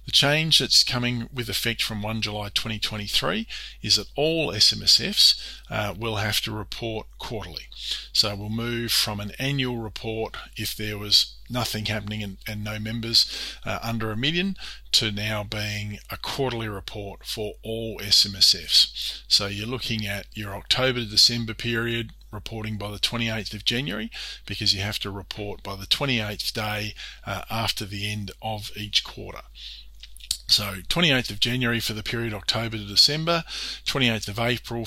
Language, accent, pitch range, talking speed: English, Australian, 105-115 Hz, 160 wpm